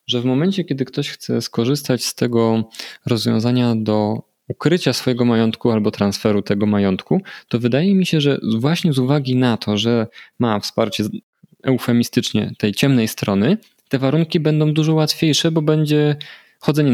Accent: native